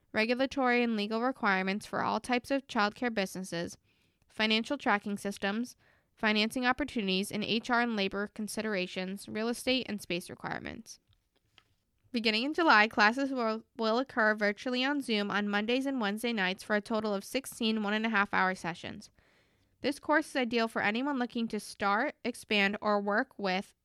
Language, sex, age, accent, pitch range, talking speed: English, female, 10-29, American, 200-240 Hz, 150 wpm